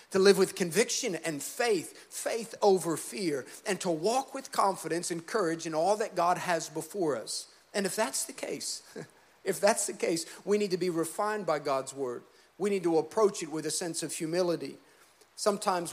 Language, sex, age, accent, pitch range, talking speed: English, male, 50-69, American, 165-220 Hz, 190 wpm